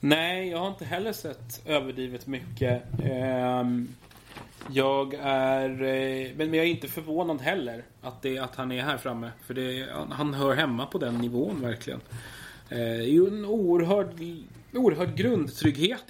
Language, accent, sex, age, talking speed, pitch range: Swedish, native, male, 30-49, 135 wpm, 120-145 Hz